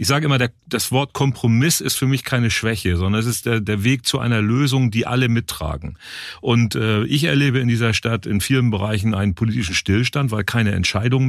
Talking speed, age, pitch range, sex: 195 wpm, 40-59, 110-130 Hz, male